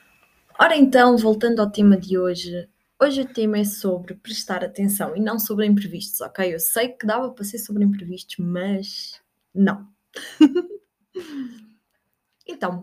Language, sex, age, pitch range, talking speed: Portuguese, female, 20-39, 190-225 Hz, 140 wpm